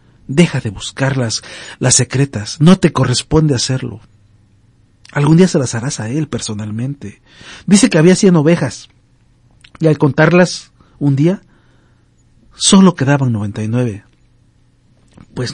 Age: 50-69